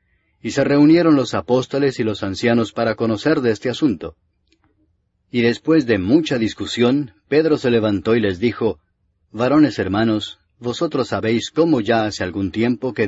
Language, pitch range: English, 100-130 Hz